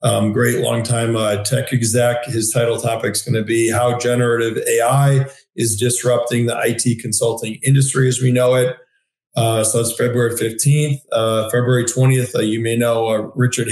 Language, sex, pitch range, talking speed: English, male, 115-125 Hz, 175 wpm